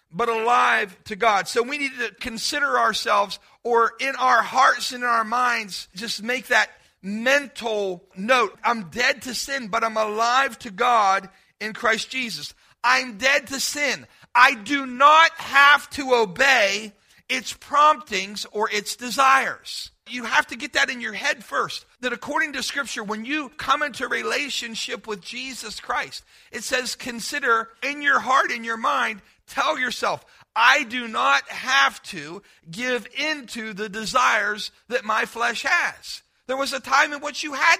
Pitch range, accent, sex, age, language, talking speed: 220-275 Hz, American, male, 40-59, English, 165 wpm